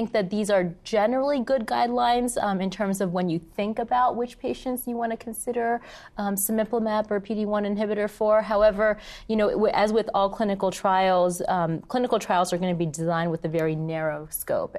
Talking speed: 200 wpm